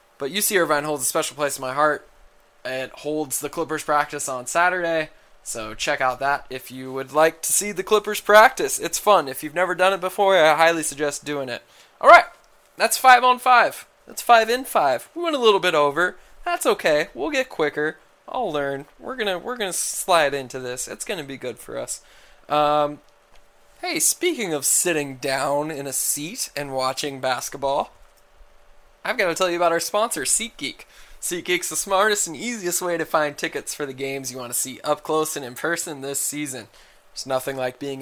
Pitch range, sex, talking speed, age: 140-190 Hz, male, 205 wpm, 20-39